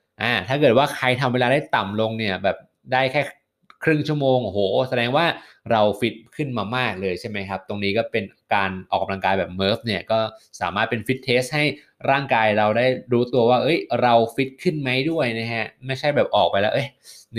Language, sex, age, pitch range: Thai, male, 20-39, 100-130 Hz